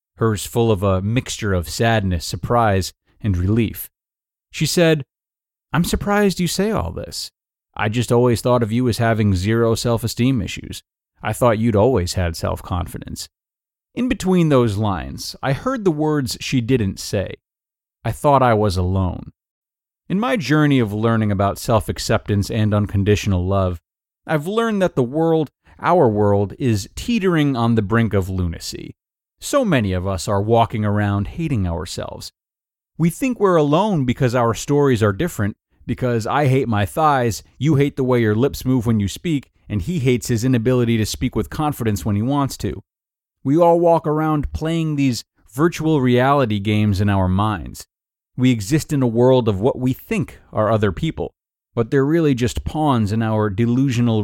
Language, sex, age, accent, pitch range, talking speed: English, male, 30-49, American, 100-140 Hz, 170 wpm